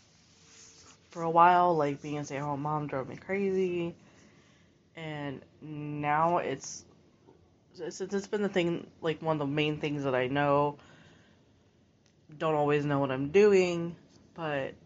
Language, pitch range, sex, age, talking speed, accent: English, 140-175 Hz, female, 20-39, 140 wpm, American